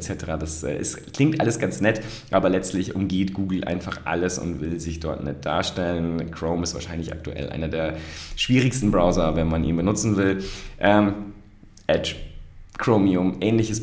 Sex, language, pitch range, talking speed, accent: male, German, 95-125 Hz, 155 wpm, German